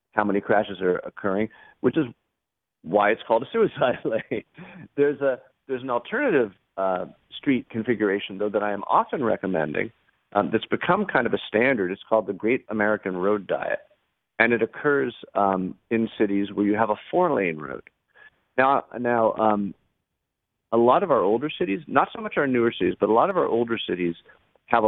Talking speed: 185 wpm